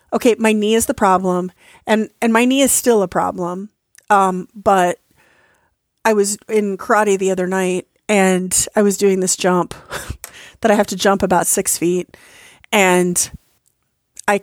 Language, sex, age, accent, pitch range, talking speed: English, female, 40-59, American, 175-210 Hz, 160 wpm